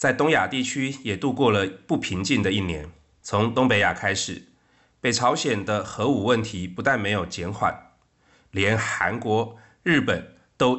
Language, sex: Chinese, male